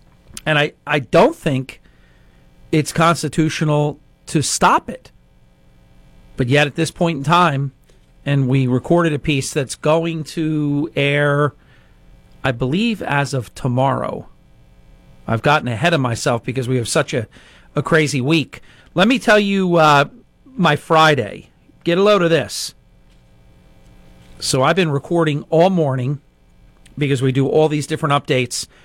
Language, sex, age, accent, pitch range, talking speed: English, male, 40-59, American, 120-155 Hz, 145 wpm